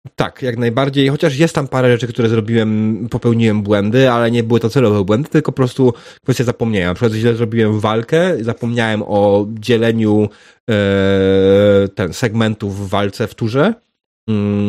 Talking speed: 160 wpm